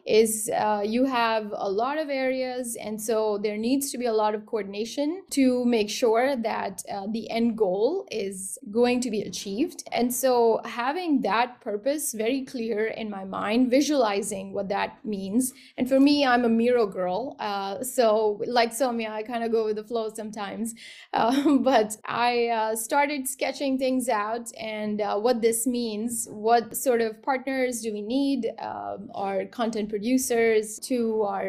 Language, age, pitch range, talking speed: English, 20-39, 215-260 Hz, 170 wpm